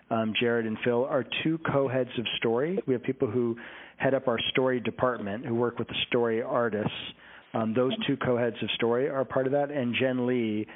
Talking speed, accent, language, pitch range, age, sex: 205 wpm, American, English, 115-130 Hz, 40-59, male